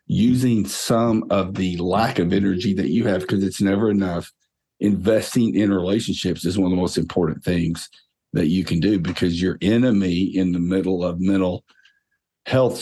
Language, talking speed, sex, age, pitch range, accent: English, 175 wpm, male, 50-69, 95-125 Hz, American